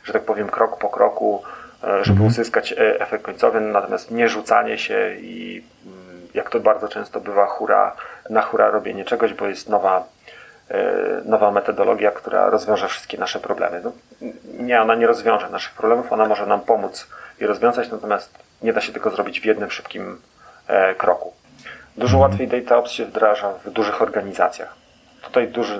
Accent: native